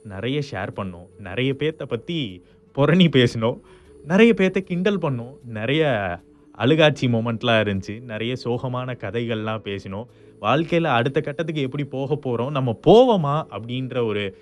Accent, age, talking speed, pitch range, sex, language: native, 20-39, 125 wpm, 110-175 Hz, male, Tamil